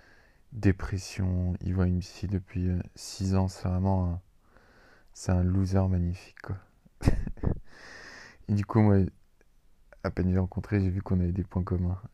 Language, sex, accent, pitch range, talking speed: French, male, French, 90-100 Hz, 165 wpm